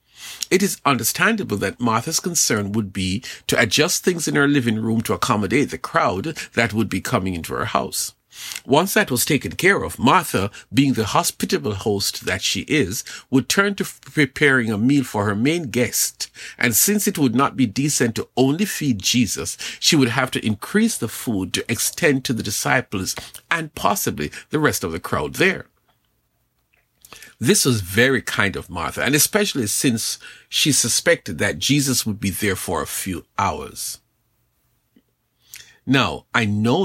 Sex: male